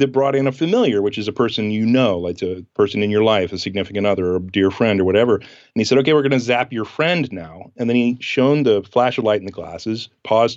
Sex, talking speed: male, 280 wpm